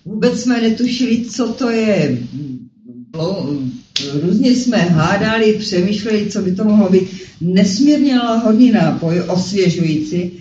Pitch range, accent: 160-220 Hz, native